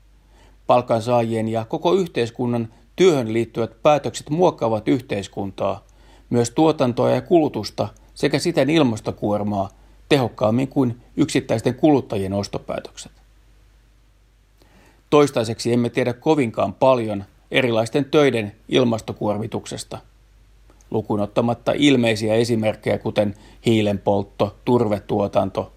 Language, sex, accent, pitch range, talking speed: Finnish, male, native, 105-130 Hz, 80 wpm